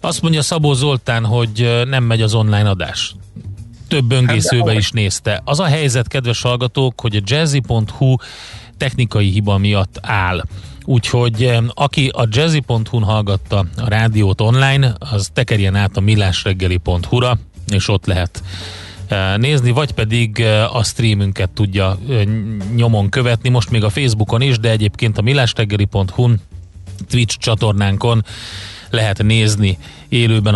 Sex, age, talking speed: male, 30-49, 125 wpm